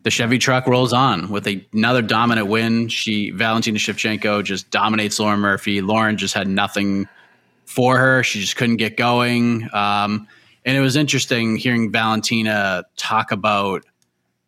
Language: English